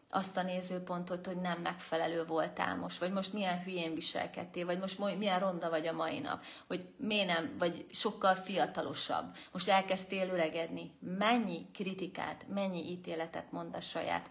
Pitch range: 165-205 Hz